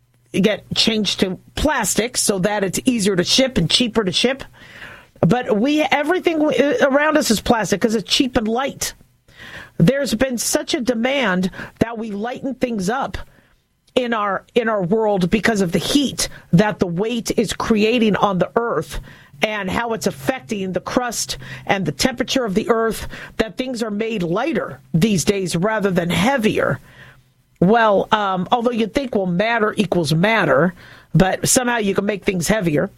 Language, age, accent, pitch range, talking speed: English, 40-59, American, 190-245 Hz, 165 wpm